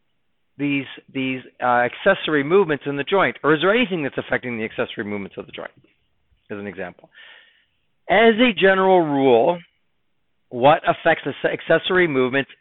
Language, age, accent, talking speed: English, 50-69, American, 150 wpm